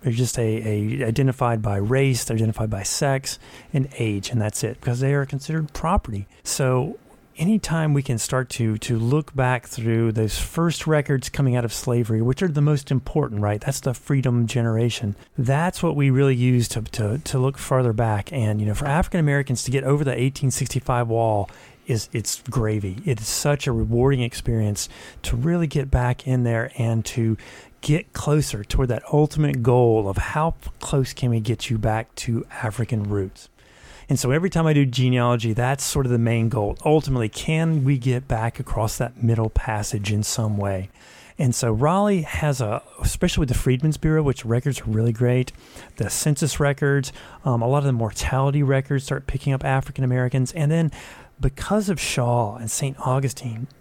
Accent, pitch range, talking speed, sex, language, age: American, 115-140 Hz, 190 wpm, male, English, 40-59